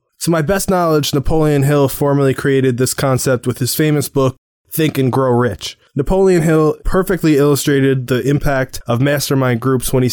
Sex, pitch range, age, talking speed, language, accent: male, 125-150 Hz, 20-39, 170 wpm, English, American